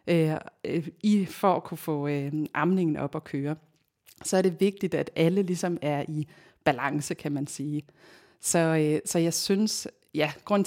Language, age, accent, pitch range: Danish, 30-49, native, 155-185 Hz